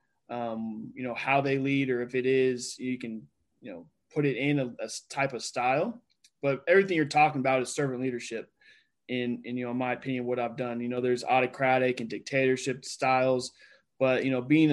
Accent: American